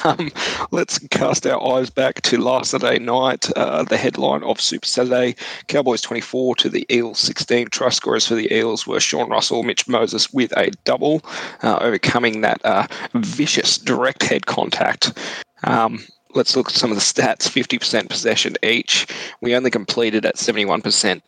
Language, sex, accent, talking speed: English, male, Australian, 165 wpm